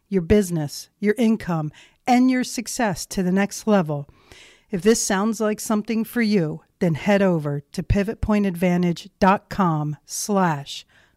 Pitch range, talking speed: 155-205 Hz, 130 wpm